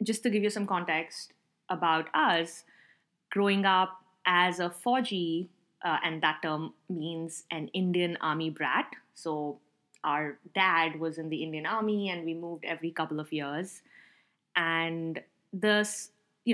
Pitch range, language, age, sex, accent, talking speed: 165-210 Hz, English, 20-39, female, Indian, 145 wpm